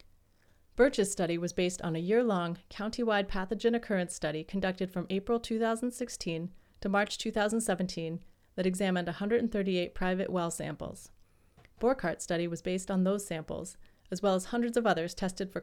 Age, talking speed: 30-49, 150 wpm